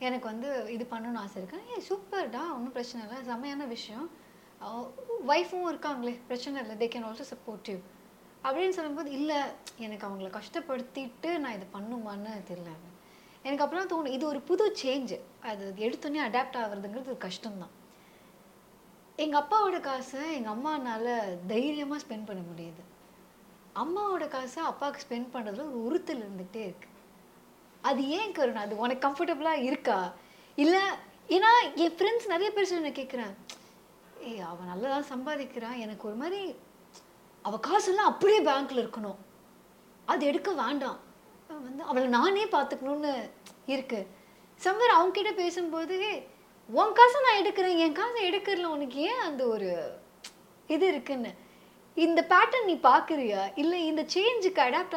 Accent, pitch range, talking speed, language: native, 225-330 Hz, 115 wpm, Tamil